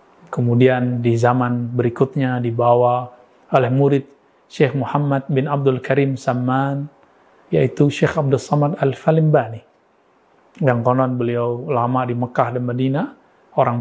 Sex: male